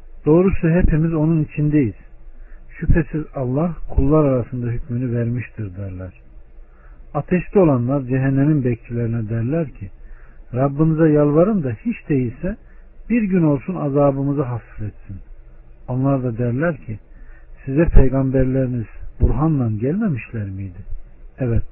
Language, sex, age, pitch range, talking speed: Turkish, male, 50-69, 105-145 Hz, 105 wpm